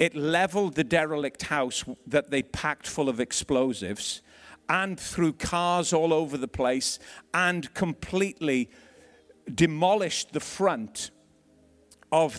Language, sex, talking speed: English, male, 115 wpm